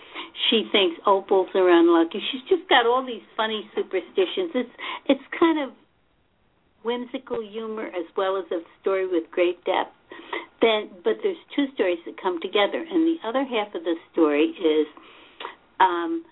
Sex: female